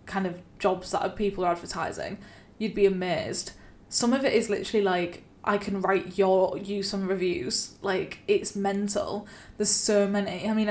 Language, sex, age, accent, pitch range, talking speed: English, female, 10-29, British, 190-215 Hz, 175 wpm